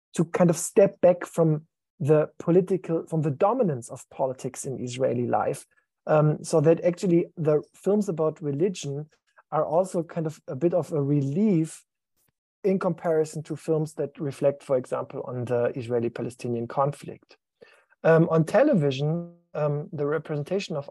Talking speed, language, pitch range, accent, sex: 150 wpm, English, 145-175 Hz, German, male